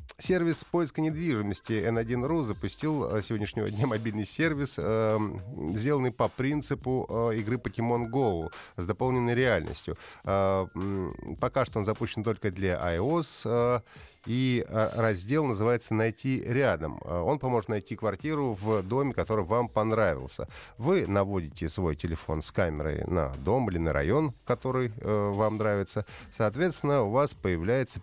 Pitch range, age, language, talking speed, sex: 95-125 Hz, 30-49, Russian, 125 wpm, male